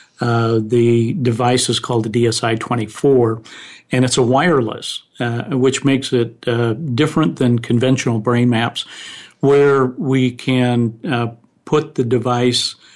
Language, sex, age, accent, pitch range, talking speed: English, male, 50-69, American, 120-130 Hz, 135 wpm